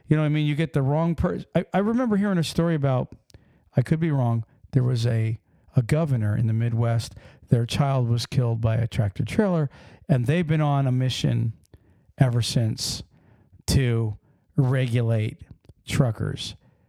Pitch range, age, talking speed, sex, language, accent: 115-160 Hz, 50-69, 165 wpm, male, English, American